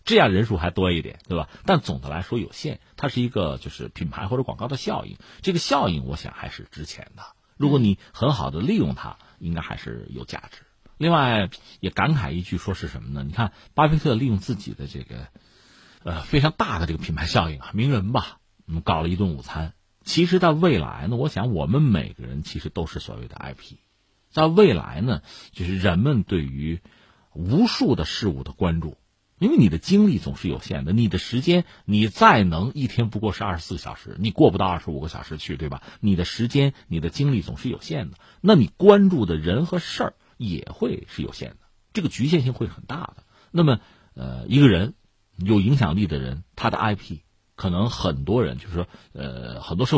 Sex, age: male, 50-69